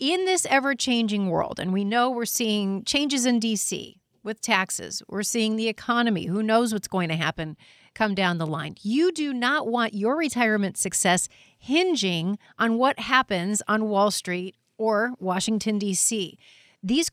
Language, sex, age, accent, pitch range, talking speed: English, female, 40-59, American, 190-245 Hz, 165 wpm